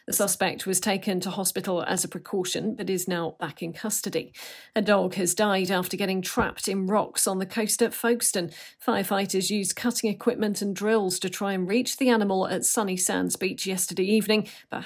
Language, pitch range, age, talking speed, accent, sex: English, 185-235 Hz, 40-59, 195 wpm, British, female